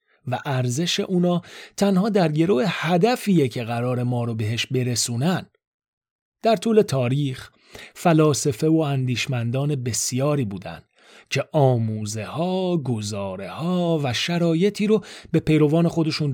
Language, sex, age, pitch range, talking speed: Persian, male, 30-49, 120-175 Hz, 120 wpm